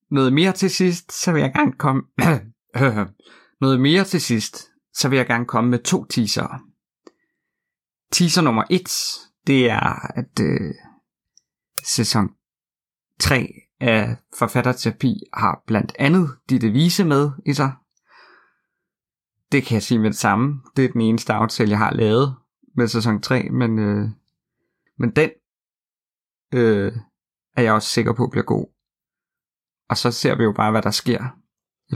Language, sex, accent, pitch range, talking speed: Danish, male, native, 115-140 Hz, 135 wpm